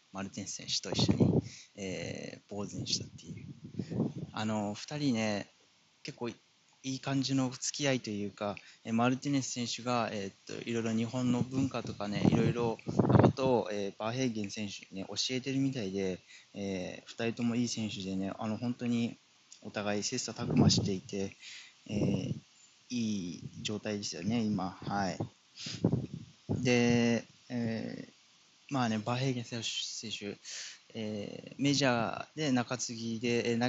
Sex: male